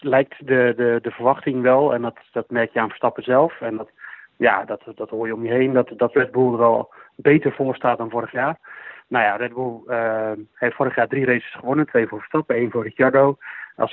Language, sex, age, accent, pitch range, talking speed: Dutch, male, 30-49, Dutch, 115-135 Hz, 235 wpm